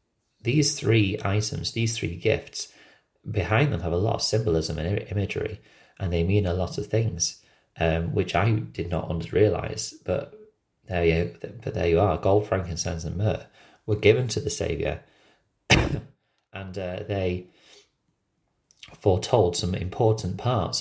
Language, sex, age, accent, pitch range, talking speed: English, male, 30-49, British, 85-105 Hz, 145 wpm